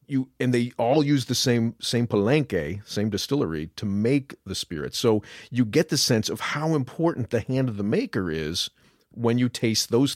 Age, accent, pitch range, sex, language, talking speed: 40-59, American, 110-150 Hz, male, English, 195 wpm